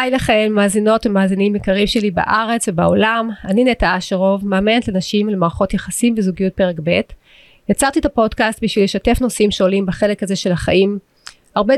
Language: Hebrew